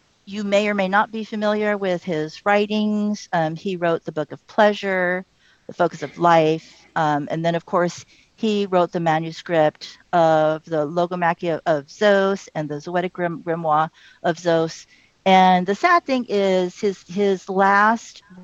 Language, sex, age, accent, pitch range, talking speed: English, female, 50-69, American, 155-190 Hz, 160 wpm